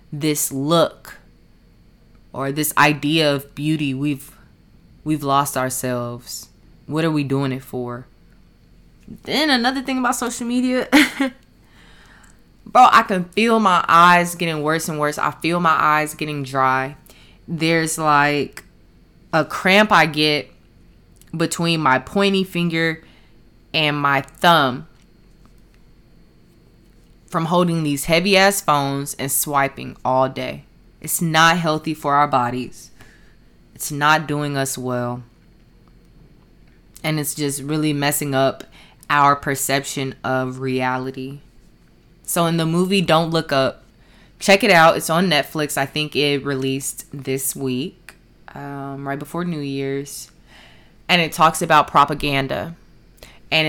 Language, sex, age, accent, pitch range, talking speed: English, female, 20-39, American, 135-165 Hz, 125 wpm